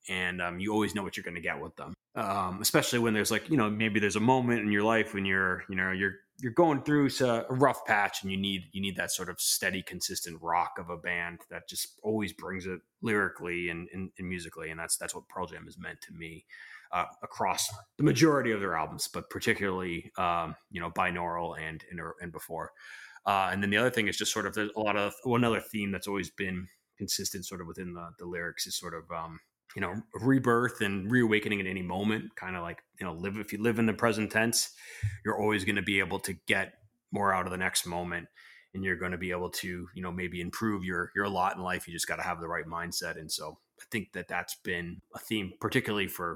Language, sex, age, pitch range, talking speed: English, male, 20-39, 90-110 Hz, 245 wpm